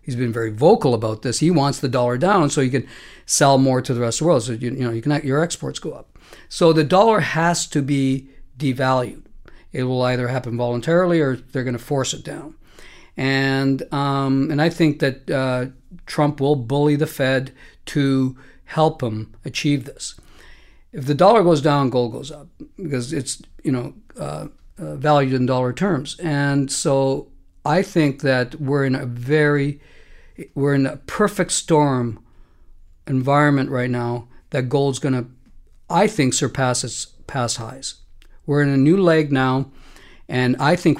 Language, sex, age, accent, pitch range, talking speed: English, male, 50-69, American, 125-155 Hz, 175 wpm